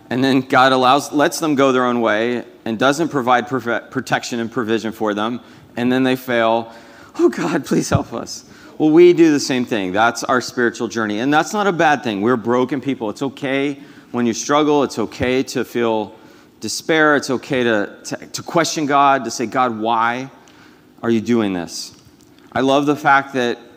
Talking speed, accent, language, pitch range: 190 wpm, American, English, 110-135 Hz